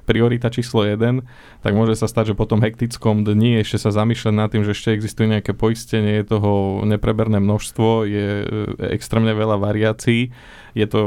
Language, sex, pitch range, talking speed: Slovak, male, 105-115 Hz, 175 wpm